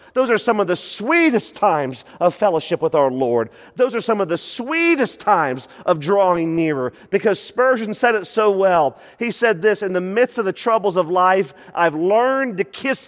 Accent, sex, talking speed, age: American, male, 195 wpm, 40-59